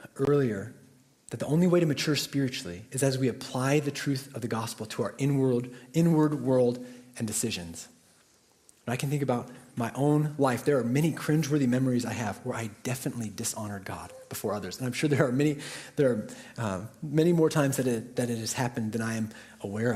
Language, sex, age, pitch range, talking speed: English, male, 30-49, 115-150 Hz, 190 wpm